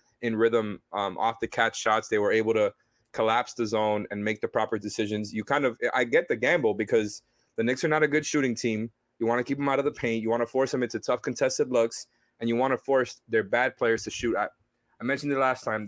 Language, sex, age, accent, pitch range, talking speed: English, male, 20-39, American, 110-130 Hz, 260 wpm